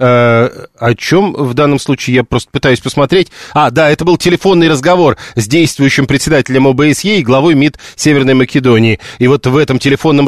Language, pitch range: Russian, 125-160 Hz